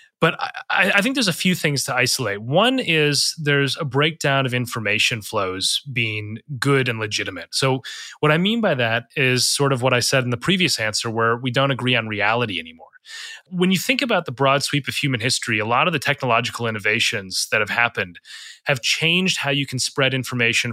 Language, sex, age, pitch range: English, male, 30-49, 120-155 Hz